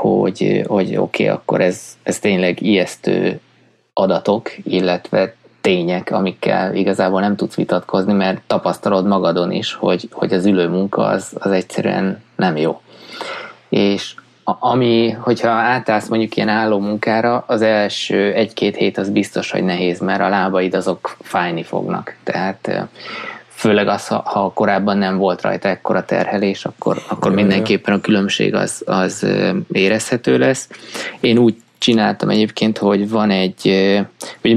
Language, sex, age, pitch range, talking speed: Hungarian, male, 20-39, 95-110 Hz, 135 wpm